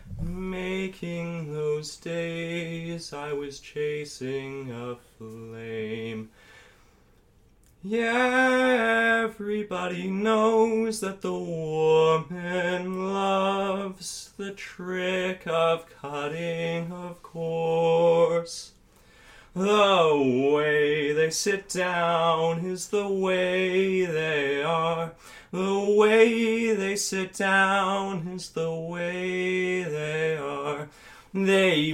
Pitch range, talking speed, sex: 150-195 Hz, 80 wpm, male